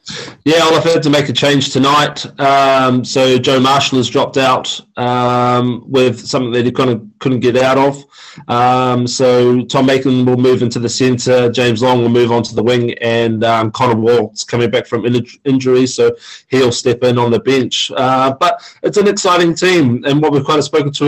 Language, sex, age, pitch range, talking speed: English, male, 20-39, 125-145 Hz, 210 wpm